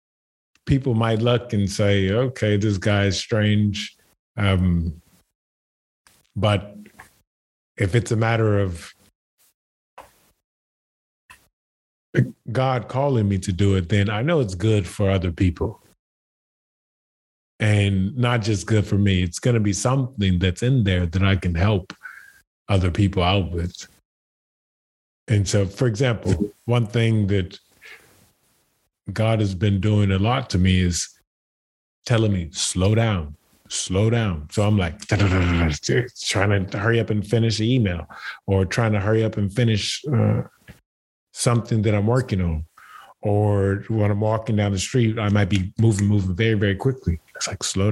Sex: male